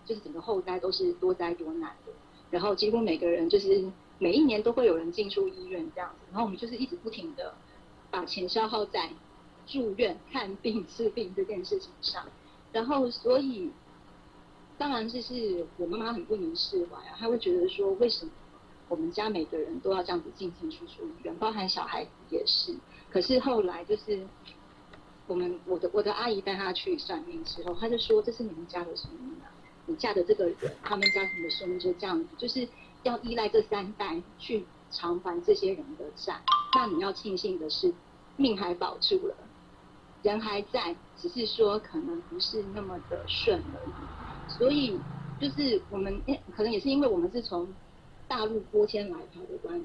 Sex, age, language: female, 30-49, Chinese